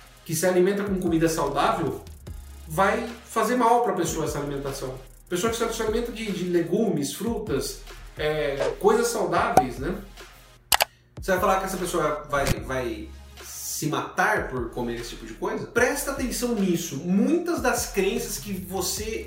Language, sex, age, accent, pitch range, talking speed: Portuguese, male, 40-59, Brazilian, 155-235 Hz, 155 wpm